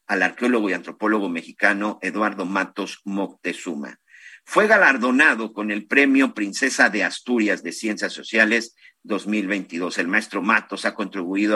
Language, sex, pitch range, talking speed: Spanish, male, 100-115 Hz, 130 wpm